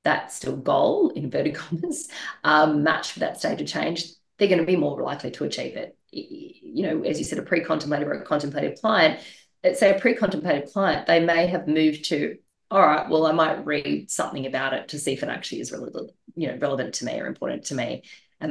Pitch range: 150-220 Hz